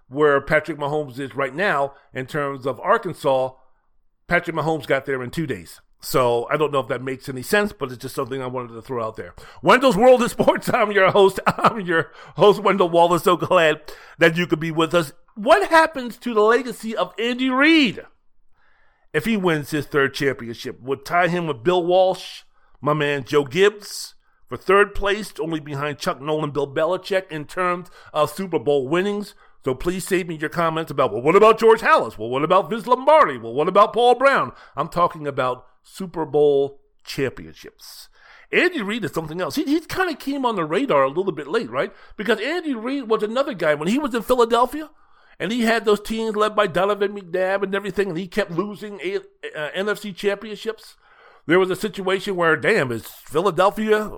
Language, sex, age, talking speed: English, male, 50-69, 200 wpm